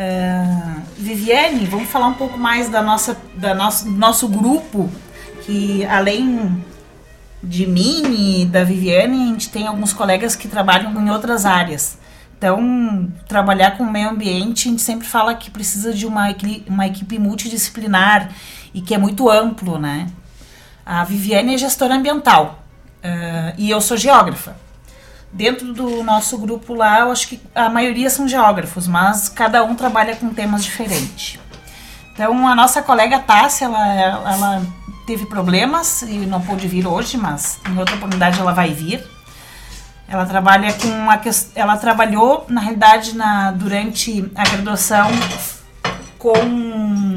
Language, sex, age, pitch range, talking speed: Portuguese, female, 30-49, 190-230 Hz, 140 wpm